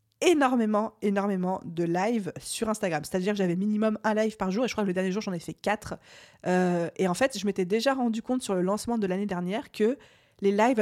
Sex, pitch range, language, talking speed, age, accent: female, 185-230 Hz, French, 240 wpm, 20-39, French